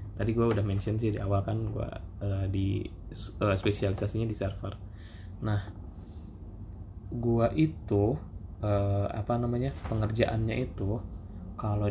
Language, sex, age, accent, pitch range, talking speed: Indonesian, male, 20-39, native, 100-115 Hz, 120 wpm